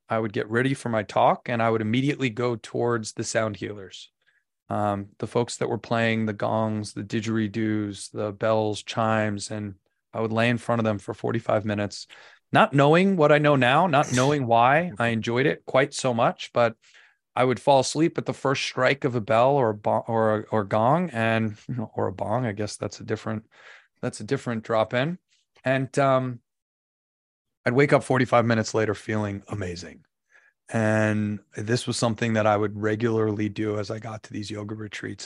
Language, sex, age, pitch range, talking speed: English, male, 30-49, 105-120 Hz, 190 wpm